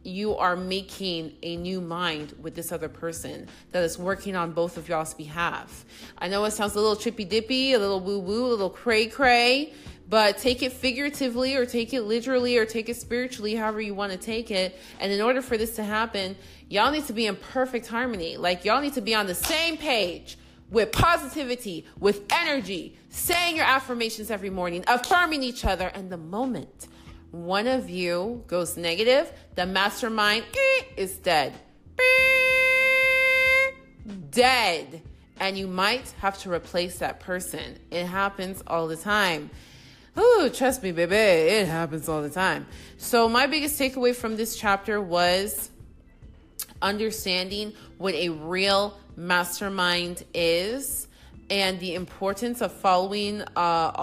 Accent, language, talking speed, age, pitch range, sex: American, English, 155 wpm, 30-49, 180-245 Hz, female